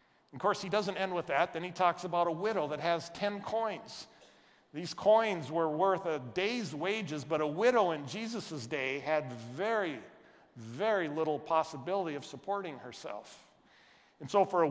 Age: 50-69